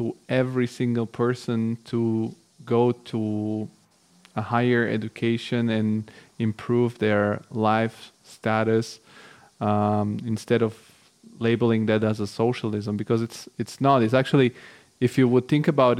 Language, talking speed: English, 125 wpm